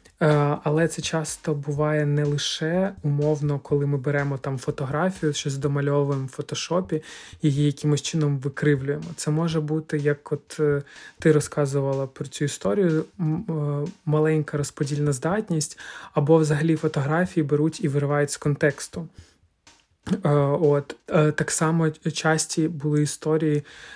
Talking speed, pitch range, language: 120 wpm, 145-160 Hz, Ukrainian